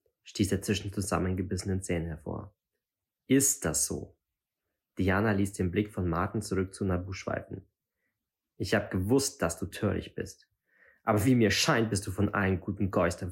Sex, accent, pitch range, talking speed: male, German, 90-110 Hz, 160 wpm